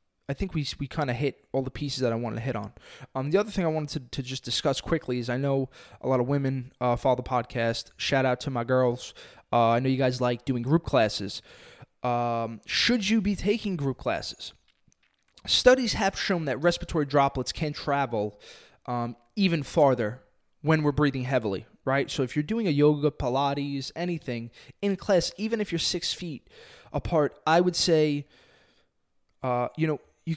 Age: 20-39